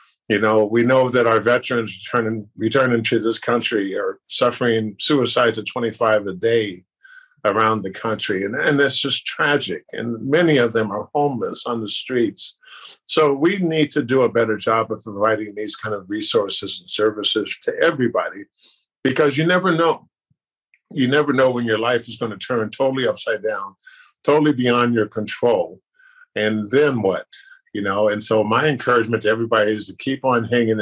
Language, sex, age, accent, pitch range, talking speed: English, male, 50-69, American, 110-150 Hz, 175 wpm